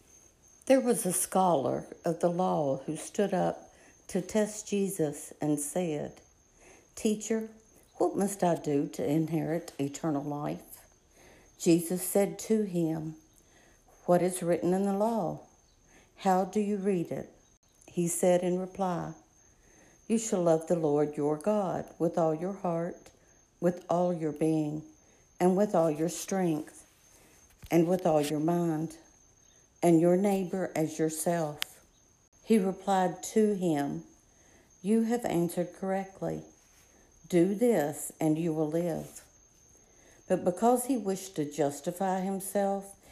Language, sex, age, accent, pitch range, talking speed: English, female, 60-79, American, 155-190 Hz, 130 wpm